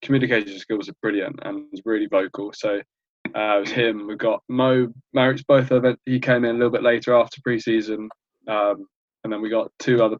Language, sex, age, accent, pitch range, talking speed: English, male, 20-39, British, 105-125 Hz, 210 wpm